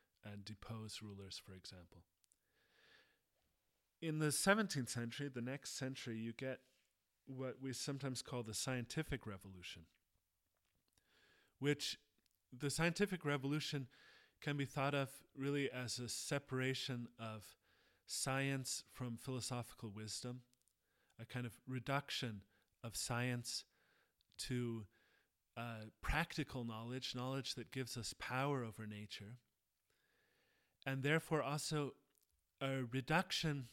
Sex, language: male, English